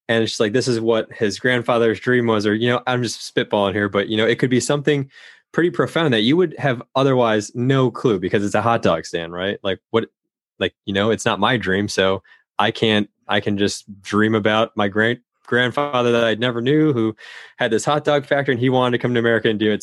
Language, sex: English, male